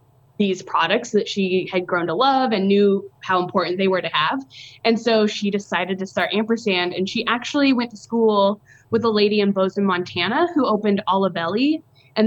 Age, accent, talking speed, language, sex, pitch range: 20-39, American, 190 wpm, English, female, 185-225 Hz